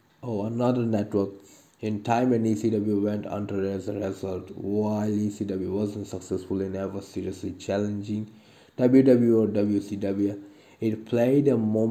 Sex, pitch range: male, 100-115 Hz